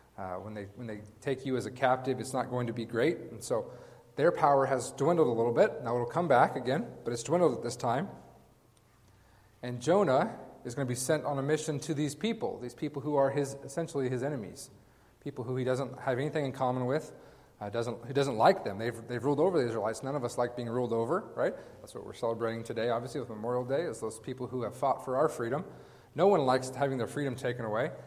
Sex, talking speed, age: male, 240 wpm, 40-59